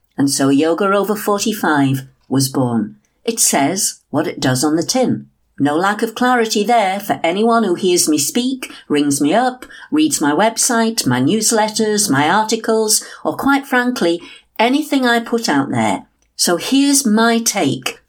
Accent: British